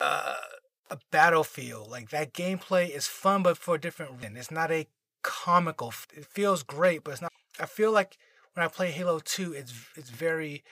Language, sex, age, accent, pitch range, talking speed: English, male, 30-49, American, 140-185 Hz, 195 wpm